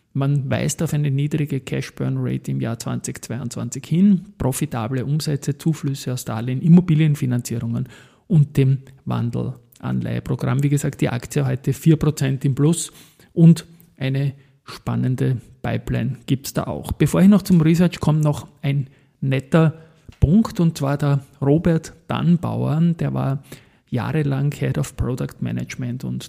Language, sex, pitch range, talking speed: German, male, 130-155 Hz, 130 wpm